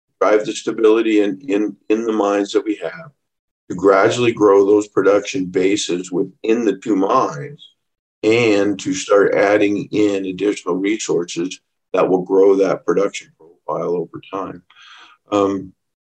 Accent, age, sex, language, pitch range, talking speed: American, 50-69, male, English, 95-145 Hz, 135 wpm